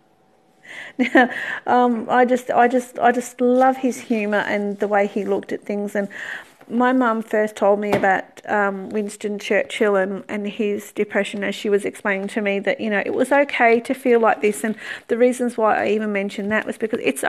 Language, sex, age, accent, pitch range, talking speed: English, female, 40-59, Australian, 205-250 Hz, 200 wpm